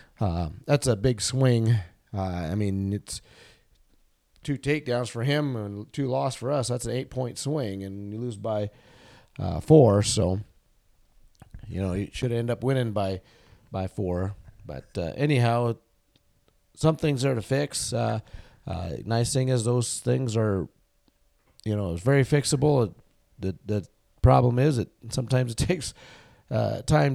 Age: 40-59